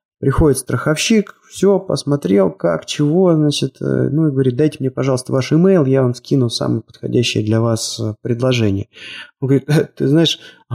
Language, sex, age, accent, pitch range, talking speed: Russian, male, 20-39, native, 115-150 Hz, 155 wpm